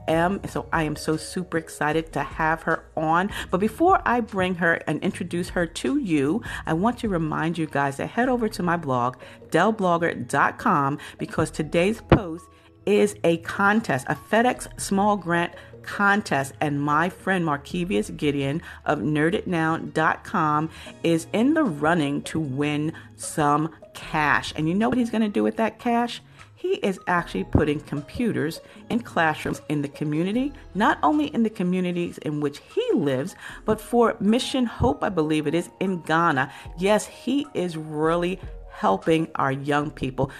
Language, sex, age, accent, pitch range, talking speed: English, female, 40-59, American, 150-205 Hz, 160 wpm